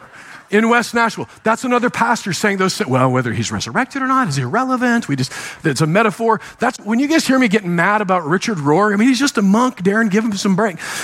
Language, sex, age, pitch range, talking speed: English, male, 50-69, 170-225 Hz, 235 wpm